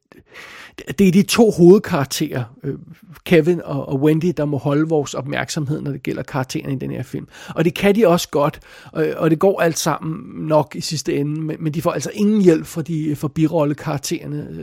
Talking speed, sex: 185 wpm, male